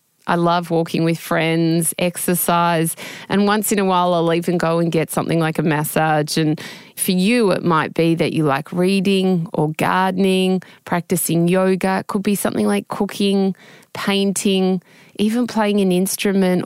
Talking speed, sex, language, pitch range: 160 wpm, female, English, 160-185 Hz